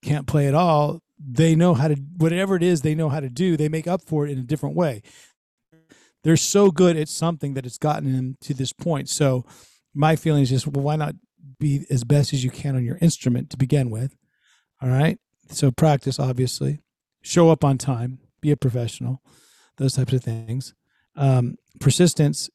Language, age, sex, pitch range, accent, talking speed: English, 40-59, male, 130-175 Hz, American, 200 wpm